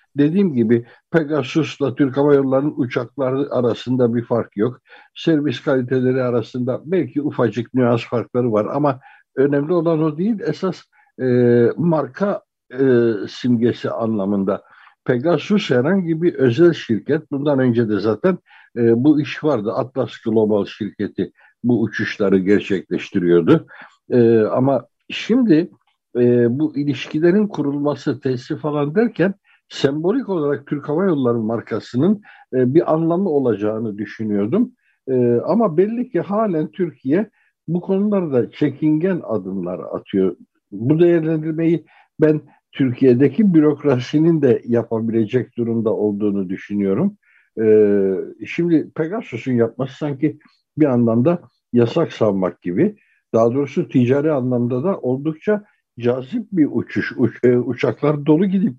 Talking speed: 110 wpm